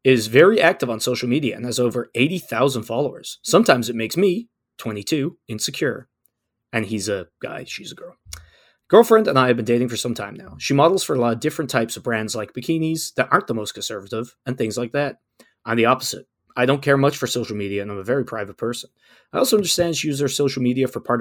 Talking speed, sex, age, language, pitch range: 230 wpm, male, 20-39, English, 115-145 Hz